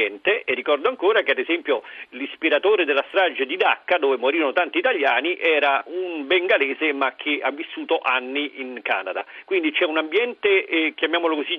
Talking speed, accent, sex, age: 165 wpm, native, male, 40-59